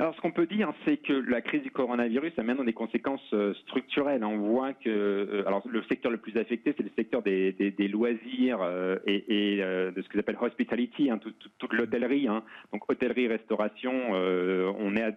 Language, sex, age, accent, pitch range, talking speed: French, male, 40-59, French, 105-130 Hz, 205 wpm